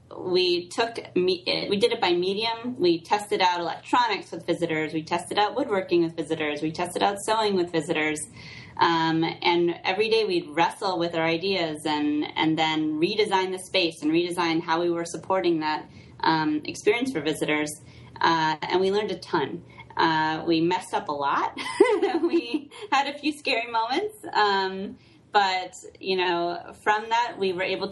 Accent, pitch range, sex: American, 170-225 Hz, female